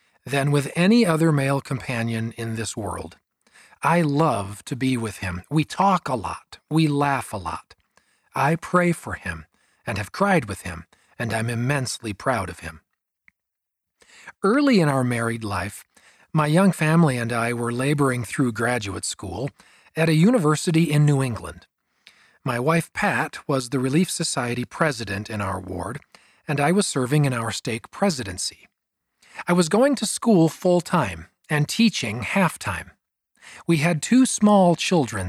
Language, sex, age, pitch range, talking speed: English, male, 40-59, 115-160 Hz, 155 wpm